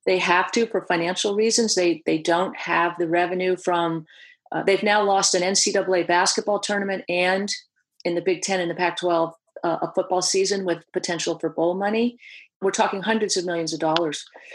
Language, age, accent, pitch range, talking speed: English, 40-59, American, 180-220 Hz, 185 wpm